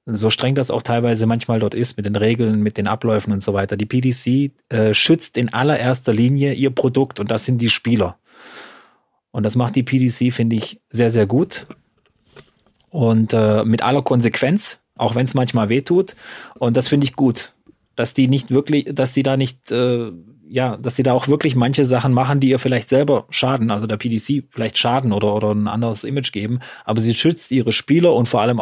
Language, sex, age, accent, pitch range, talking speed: German, male, 30-49, German, 105-125 Hz, 205 wpm